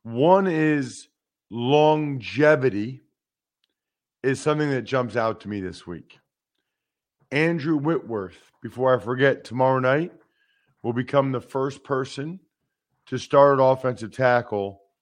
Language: English